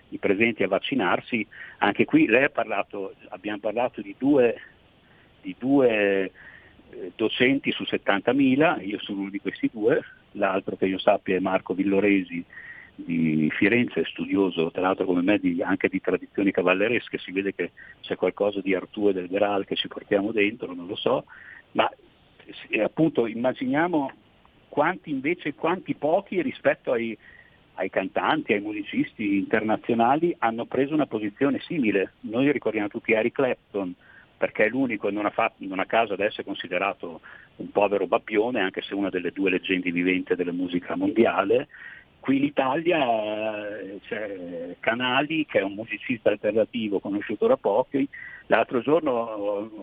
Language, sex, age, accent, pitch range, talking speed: Italian, male, 50-69, native, 95-155 Hz, 150 wpm